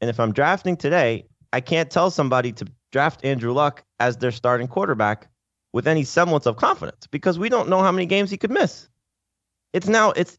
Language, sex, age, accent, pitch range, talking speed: English, male, 30-49, American, 105-175 Hz, 200 wpm